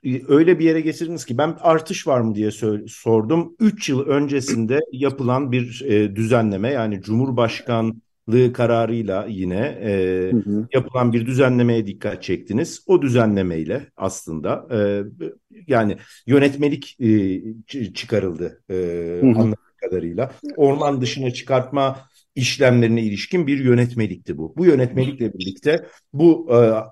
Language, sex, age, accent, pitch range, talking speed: Turkish, male, 50-69, native, 105-145 Hz, 105 wpm